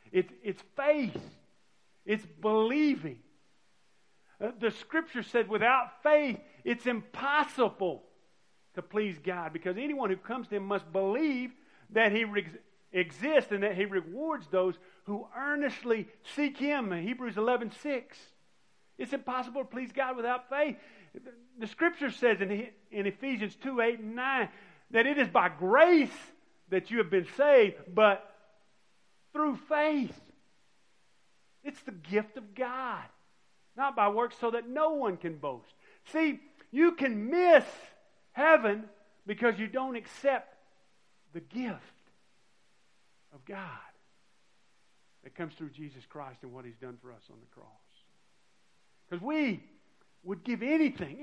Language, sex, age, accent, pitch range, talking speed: English, male, 50-69, American, 200-280 Hz, 135 wpm